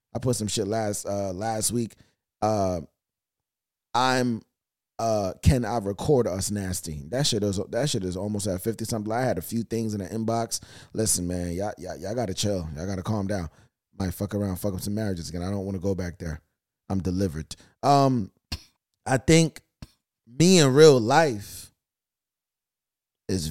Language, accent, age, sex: English, American, 30-49, male